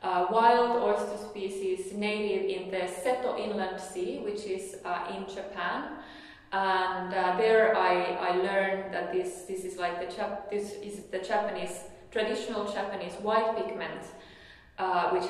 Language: English